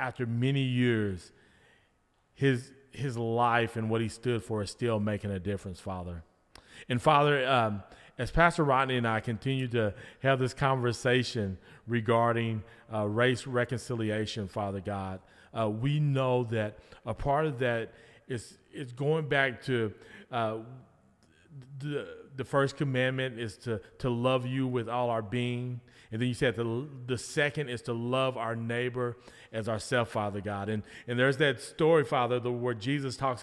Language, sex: English, male